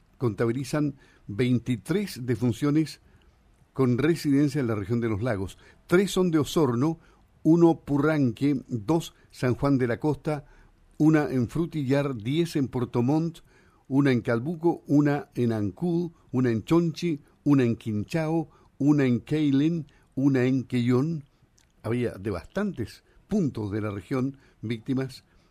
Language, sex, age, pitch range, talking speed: Spanish, male, 50-69, 110-150 Hz, 130 wpm